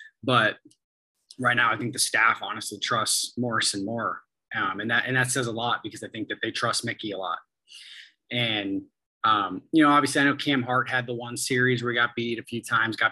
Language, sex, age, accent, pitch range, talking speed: English, male, 20-39, American, 115-130 Hz, 225 wpm